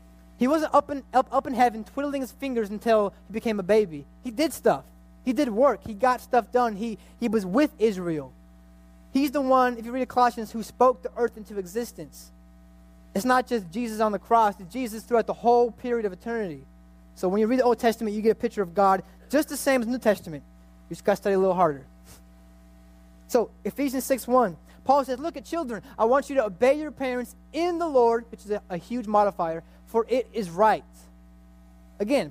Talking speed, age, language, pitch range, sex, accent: 215 wpm, 20-39, English, 170-245 Hz, male, American